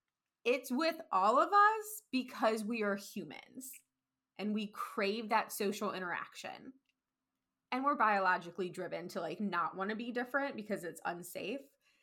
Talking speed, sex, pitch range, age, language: 145 wpm, female, 195-260 Hz, 20-39, English